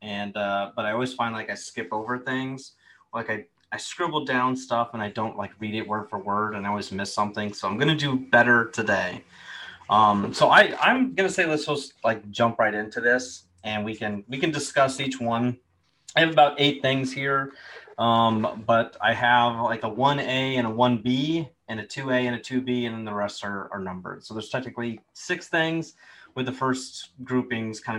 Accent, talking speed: American, 210 wpm